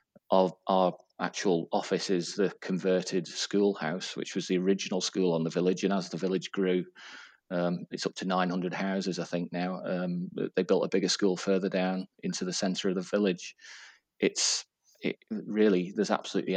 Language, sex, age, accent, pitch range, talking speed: English, male, 30-49, British, 90-100 Hz, 175 wpm